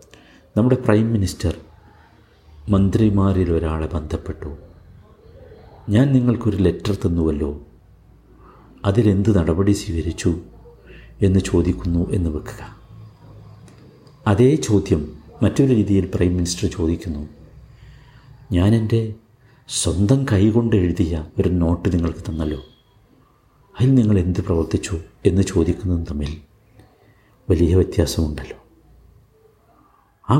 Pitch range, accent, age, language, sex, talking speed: 85-110 Hz, native, 60-79, Malayalam, male, 85 wpm